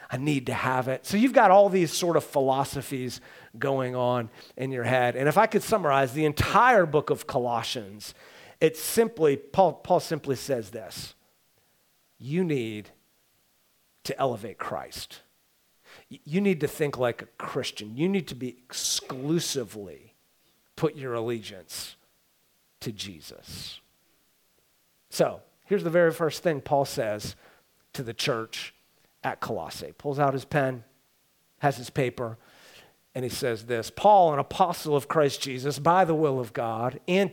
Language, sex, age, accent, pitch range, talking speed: English, male, 40-59, American, 130-155 Hz, 150 wpm